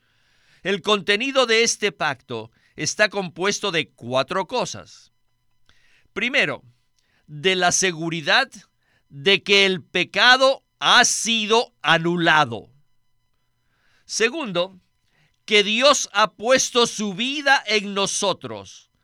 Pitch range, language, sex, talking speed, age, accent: 140-215 Hz, Spanish, male, 95 wpm, 50-69, Mexican